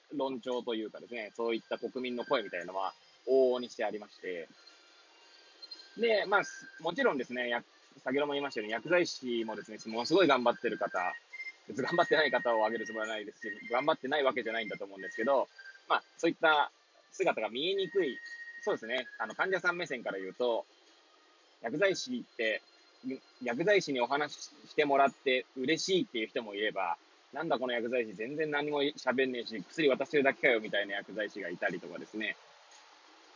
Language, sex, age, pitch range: Japanese, male, 20-39, 120-190 Hz